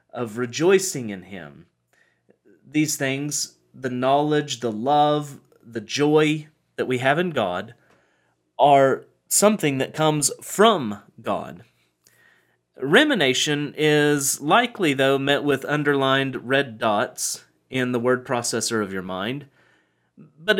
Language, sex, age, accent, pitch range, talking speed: English, male, 30-49, American, 125-170 Hz, 115 wpm